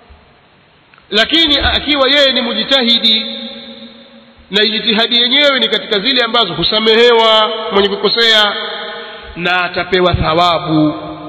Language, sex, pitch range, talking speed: Swahili, male, 190-235 Hz, 95 wpm